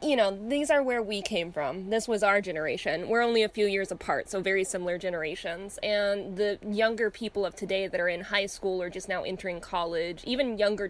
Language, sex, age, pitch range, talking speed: English, female, 20-39, 185-220 Hz, 220 wpm